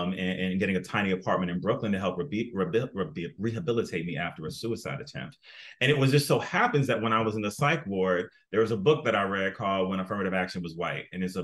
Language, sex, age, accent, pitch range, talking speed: English, male, 30-49, American, 95-135 Hz, 245 wpm